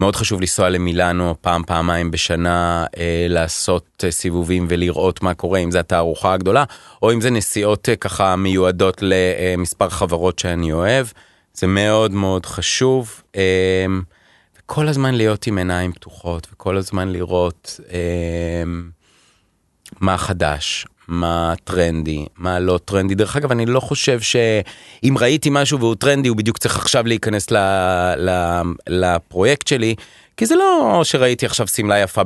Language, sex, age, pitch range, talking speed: Hebrew, male, 30-49, 85-110 Hz, 145 wpm